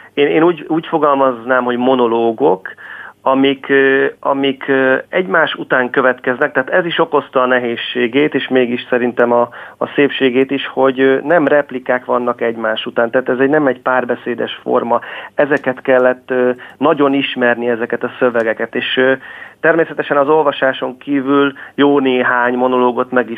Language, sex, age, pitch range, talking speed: Hungarian, male, 30-49, 125-140 Hz, 135 wpm